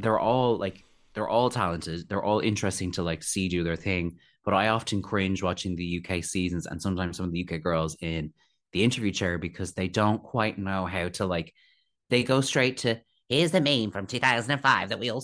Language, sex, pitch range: English, male, 90-120 Hz